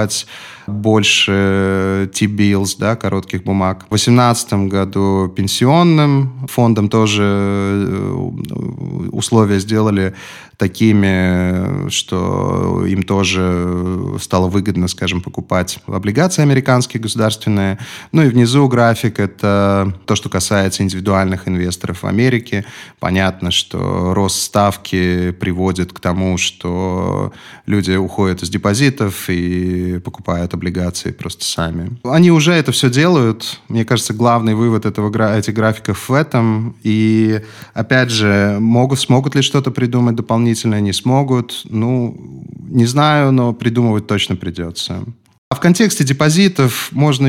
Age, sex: 20-39, male